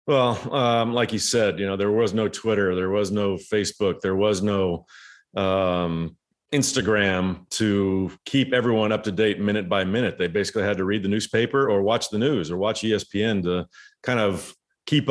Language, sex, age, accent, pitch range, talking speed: English, male, 40-59, American, 95-115 Hz, 185 wpm